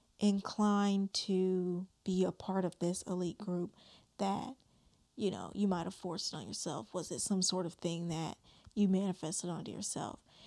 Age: 20-39